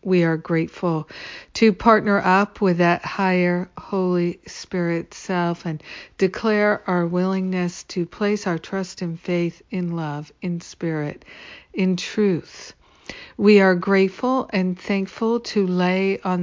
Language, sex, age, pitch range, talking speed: English, female, 60-79, 165-195 Hz, 130 wpm